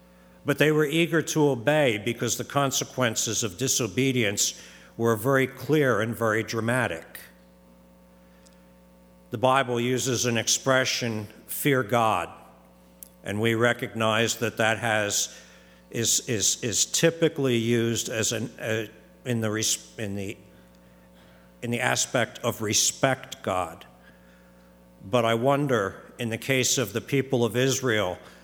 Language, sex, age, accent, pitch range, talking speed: English, male, 60-79, American, 90-130 Hz, 125 wpm